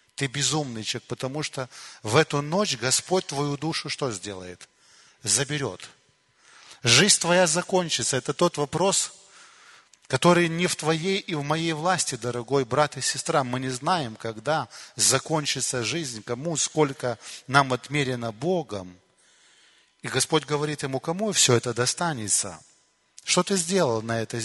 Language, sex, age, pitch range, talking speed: Russian, male, 30-49, 130-165 Hz, 135 wpm